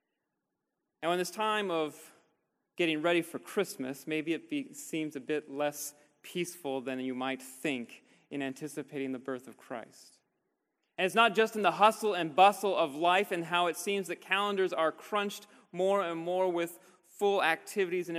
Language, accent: English, American